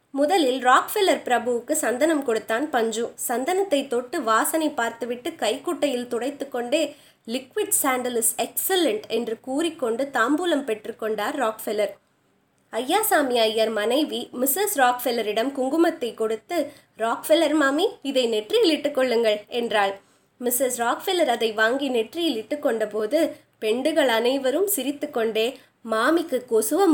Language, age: Tamil, 20-39